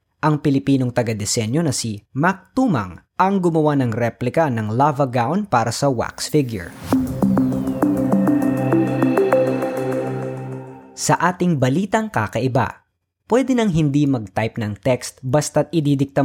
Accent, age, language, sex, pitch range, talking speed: native, 20-39, Filipino, female, 120-160 Hz, 110 wpm